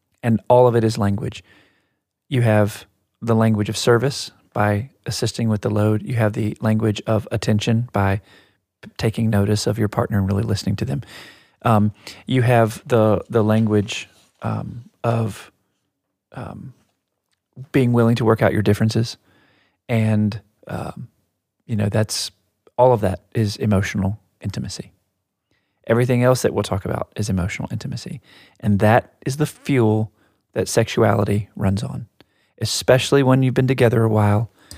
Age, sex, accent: 40-59, male, American